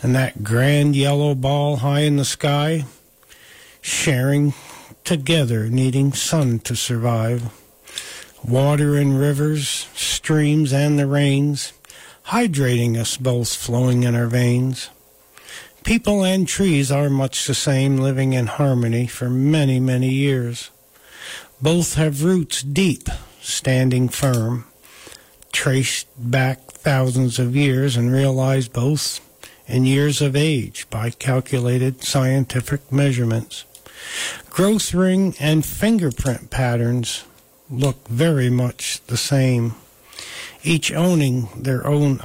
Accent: American